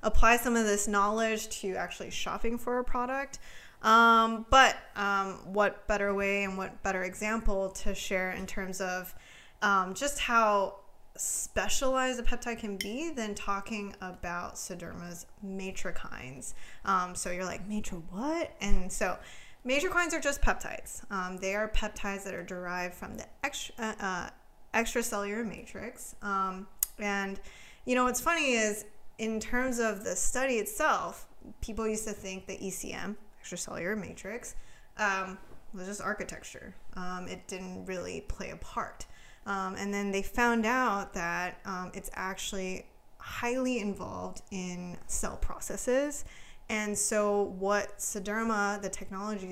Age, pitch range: 20-39, 190-230 Hz